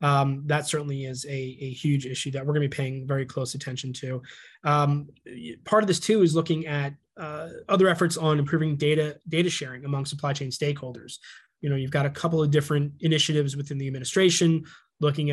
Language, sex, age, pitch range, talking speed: English, male, 20-39, 135-150 Hz, 200 wpm